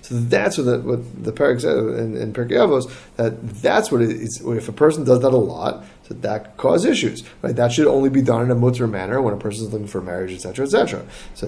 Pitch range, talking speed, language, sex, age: 105-130 Hz, 245 wpm, English, male, 30-49